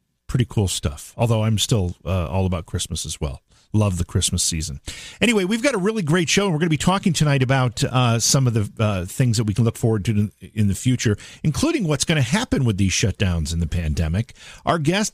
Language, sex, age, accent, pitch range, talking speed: English, male, 50-69, American, 100-150 Hz, 235 wpm